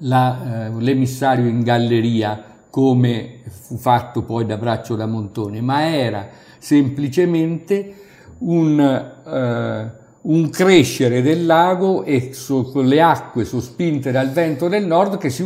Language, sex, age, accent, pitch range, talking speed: Italian, male, 50-69, native, 120-160 Hz, 130 wpm